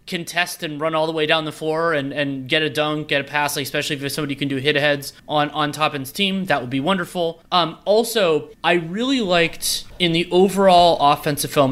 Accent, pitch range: American, 145-190 Hz